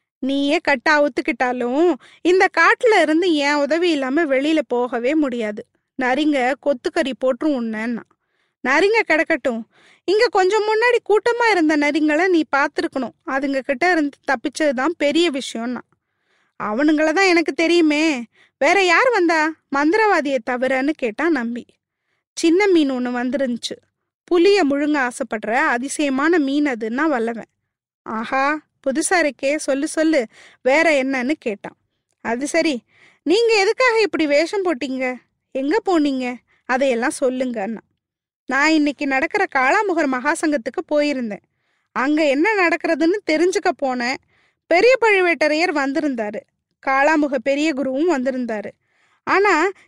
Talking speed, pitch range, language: 105 wpm, 265-340 Hz, Tamil